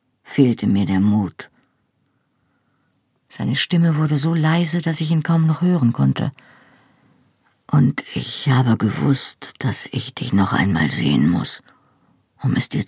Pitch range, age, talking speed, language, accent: 125-155 Hz, 50-69, 140 wpm, German, German